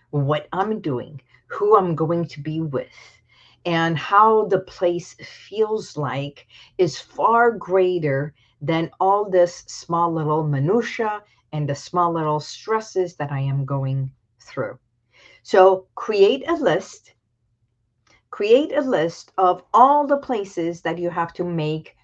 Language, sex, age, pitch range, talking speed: English, female, 50-69, 125-210 Hz, 135 wpm